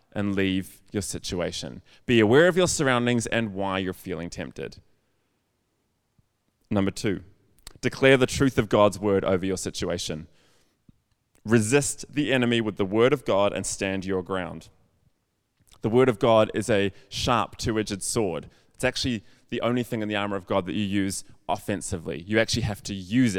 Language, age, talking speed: English, 20-39, 165 wpm